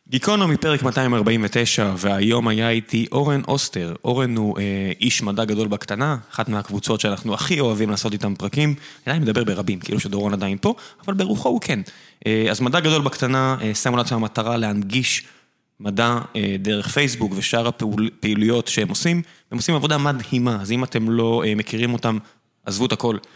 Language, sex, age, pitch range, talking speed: Hebrew, male, 20-39, 105-135 Hz, 170 wpm